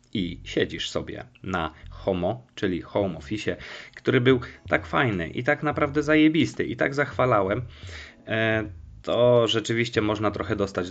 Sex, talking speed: male, 130 wpm